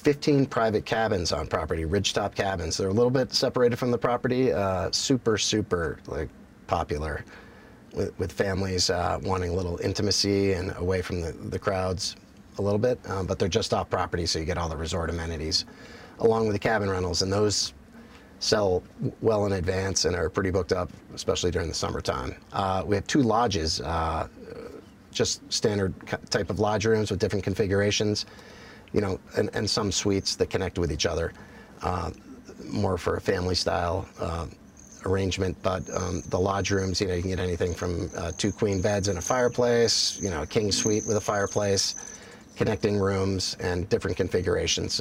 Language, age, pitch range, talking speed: English, 30-49, 90-105 Hz, 180 wpm